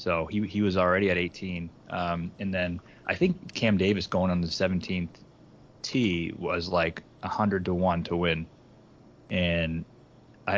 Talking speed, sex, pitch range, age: 160 wpm, male, 90-110 Hz, 20-39